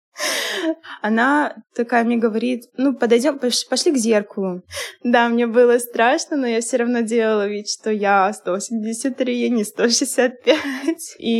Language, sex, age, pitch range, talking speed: Russian, female, 20-39, 205-240 Hz, 135 wpm